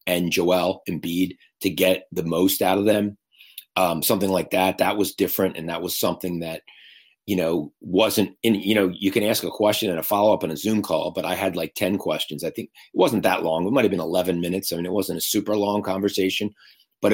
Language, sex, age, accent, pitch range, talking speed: English, male, 40-59, American, 90-100 Hz, 230 wpm